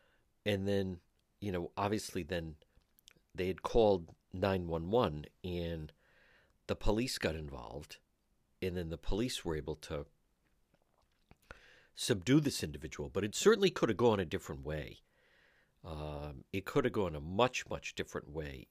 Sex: male